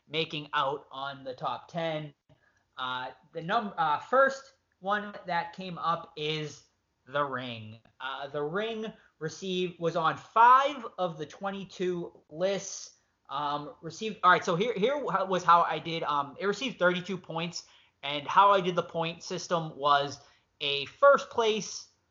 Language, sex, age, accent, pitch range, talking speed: English, male, 20-39, American, 145-190 Hz, 150 wpm